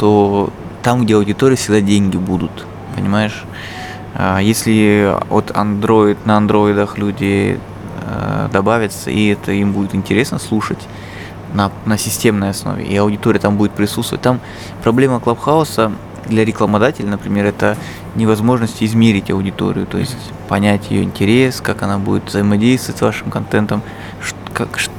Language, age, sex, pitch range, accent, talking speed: Russian, 20-39, male, 100-115 Hz, native, 125 wpm